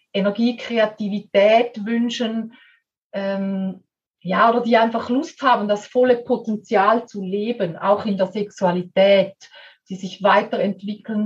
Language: German